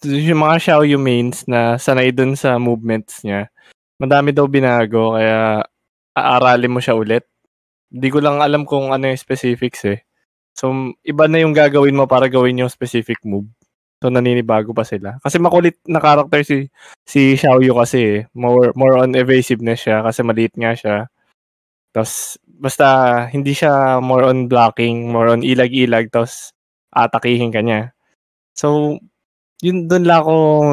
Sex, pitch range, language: male, 120-145 Hz, Filipino